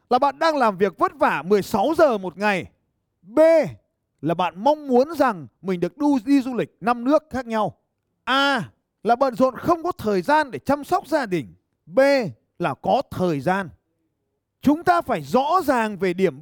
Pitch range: 180-290 Hz